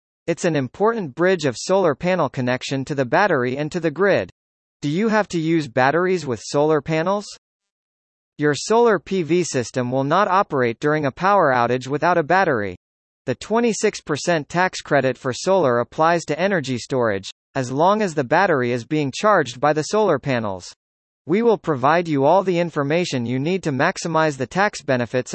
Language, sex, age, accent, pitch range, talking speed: English, male, 40-59, American, 130-185 Hz, 175 wpm